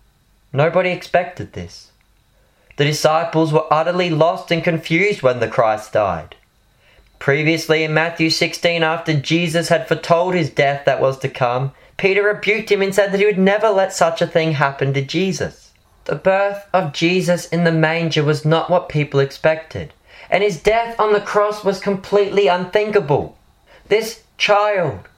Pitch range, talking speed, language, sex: 155-200 Hz, 160 wpm, English, male